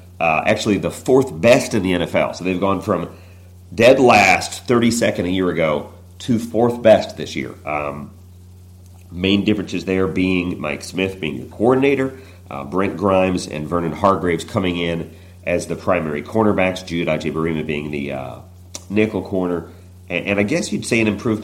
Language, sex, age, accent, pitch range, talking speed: English, male, 40-59, American, 85-100 Hz, 170 wpm